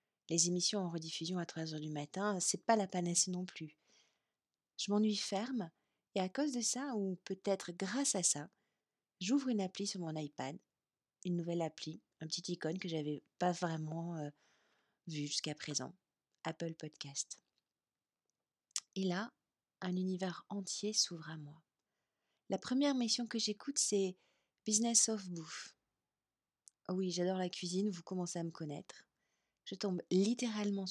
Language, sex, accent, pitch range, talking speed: French, female, French, 165-210 Hz, 160 wpm